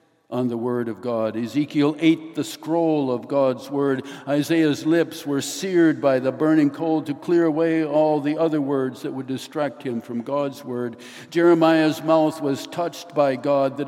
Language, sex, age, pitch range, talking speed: English, male, 60-79, 120-155 Hz, 175 wpm